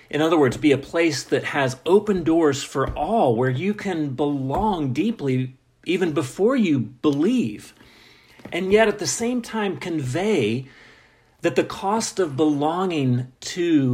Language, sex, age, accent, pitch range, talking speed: English, male, 40-59, American, 125-170 Hz, 145 wpm